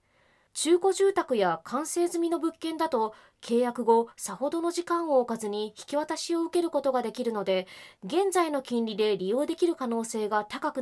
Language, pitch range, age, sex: Japanese, 205-300 Hz, 20-39, female